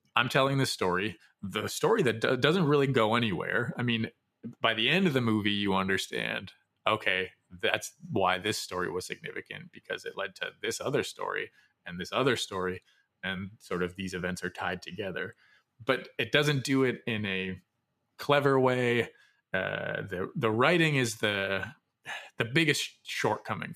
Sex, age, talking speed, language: male, 20-39, 165 wpm, English